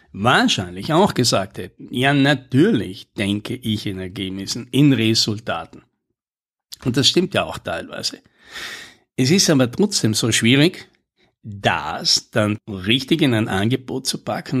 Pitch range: 110-145 Hz